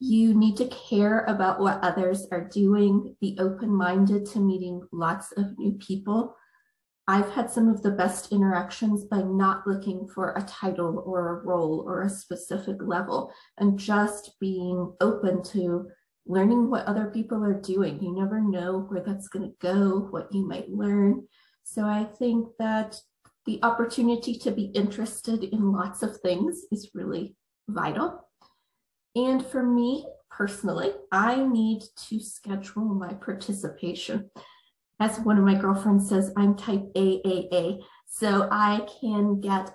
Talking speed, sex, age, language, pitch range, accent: 150 wpm, female, 30-49, English, 185-220 Hz, American